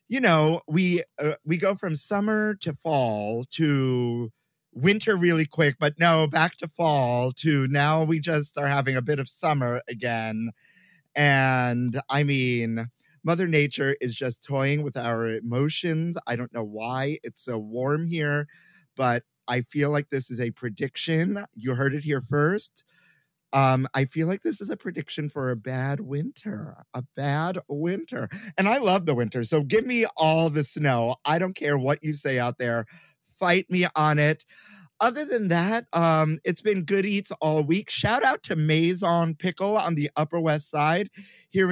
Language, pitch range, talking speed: English, 135-170 Hz, 175 wpm